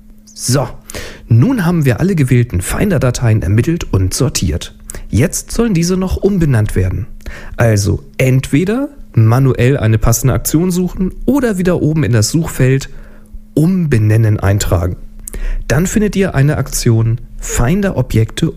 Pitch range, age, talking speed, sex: 105-150 Hz, 40-59, 120 wpm, male